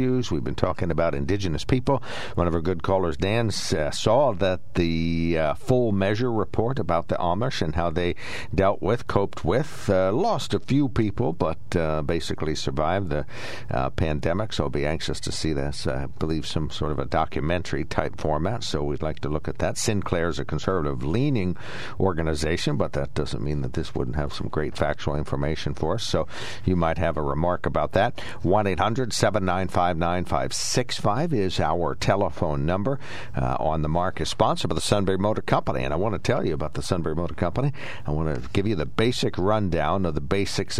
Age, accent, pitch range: 60-79, American, 80-110 Hz